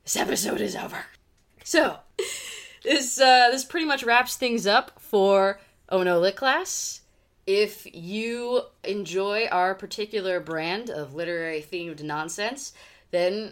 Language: English